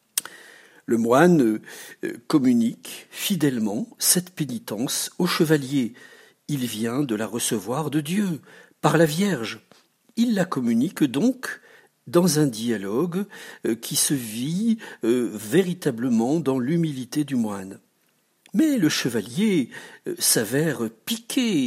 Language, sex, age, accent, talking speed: French, male, 60-79, French, 105 wpm